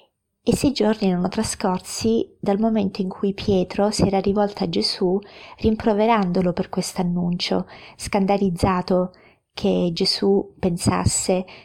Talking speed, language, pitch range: 115 wpm, Italian, 180-215 Hz